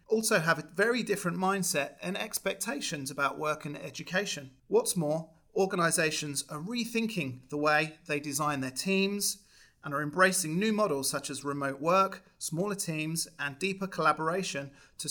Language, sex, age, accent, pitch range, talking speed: English, male, 30-49, British, 140-175 Hz, 150 wpm